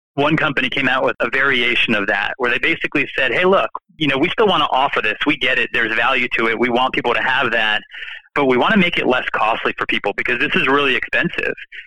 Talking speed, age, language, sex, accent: 260 wpm, 30-49, English, male, American